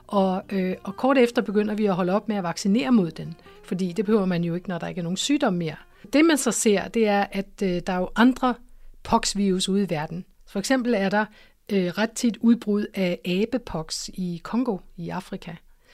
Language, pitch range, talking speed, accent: Danish, 185-225 Hz, 220 wpm, native